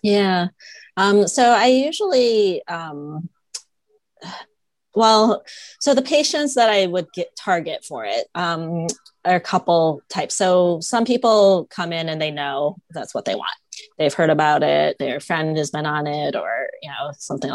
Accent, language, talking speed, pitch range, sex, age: American, English, 165 wpm, 155-205 Hz, female, 20-39